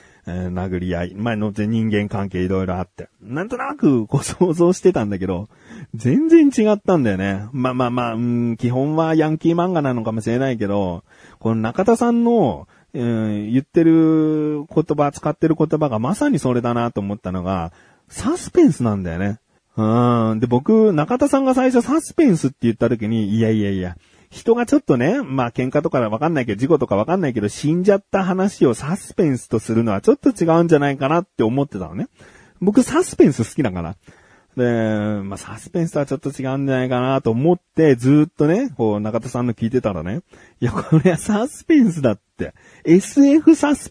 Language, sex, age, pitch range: Japanese, male, 30-49, 105-180 Hz